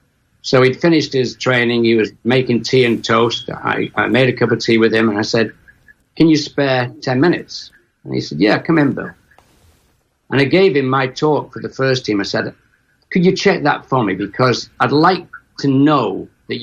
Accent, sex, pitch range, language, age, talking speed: British, male, 120-150 Hz, English, 60-79, 215 wpm